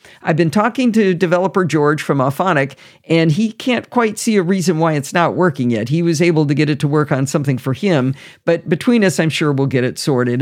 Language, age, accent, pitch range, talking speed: English, 50-69, American, 140-185 Hz, 235 wpm